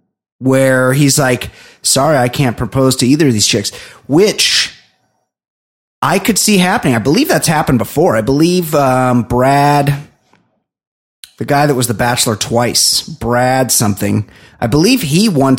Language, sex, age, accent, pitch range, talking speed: English, male, 30-49, American, 130-185 Hz, 150 wpm